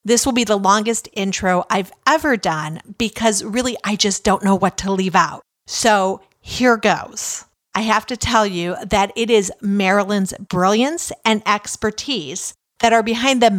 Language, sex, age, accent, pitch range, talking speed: English, female, 50-69, American, 195-240 Hz, 170 wpm